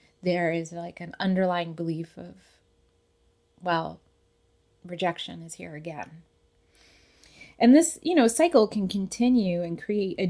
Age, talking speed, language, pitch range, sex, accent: 20-39, 130 wpm, English, 150-210 Hz, female, American